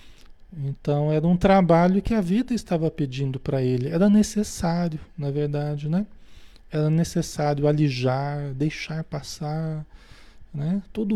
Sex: male